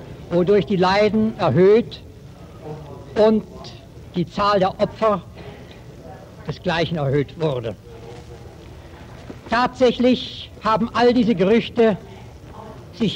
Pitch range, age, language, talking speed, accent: 165-220 Hz, 60-79, German, 80 wpm, German